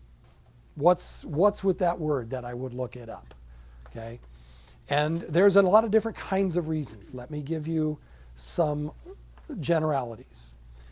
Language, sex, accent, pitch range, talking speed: English, male, American, 105-175 Hz, 150 wpm